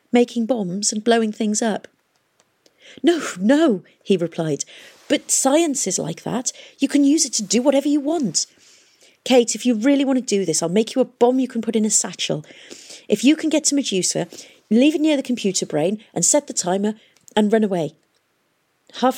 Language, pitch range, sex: English, 165-245 Hz, female